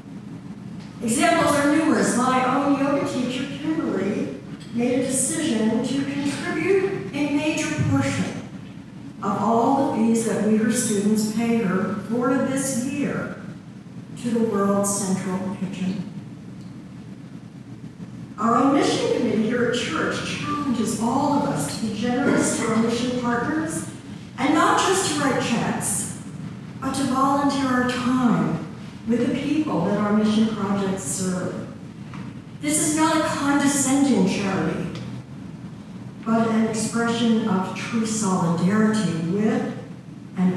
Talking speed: 125 wpm